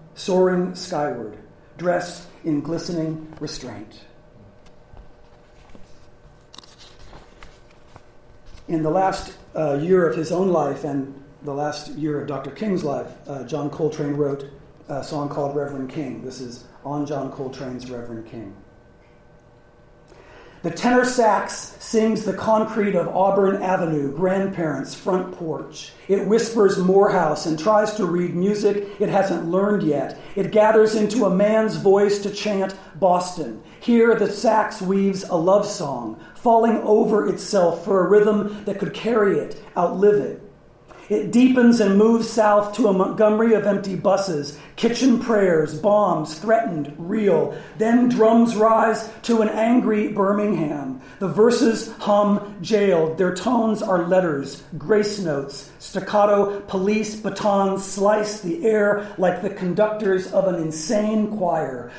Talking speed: 135 wpm